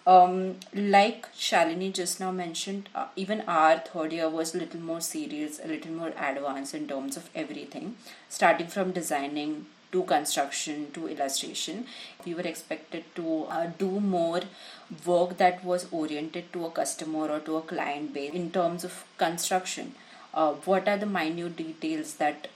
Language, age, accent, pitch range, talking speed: English, 30-49, Indian, 155-180 Hz, 160 wpm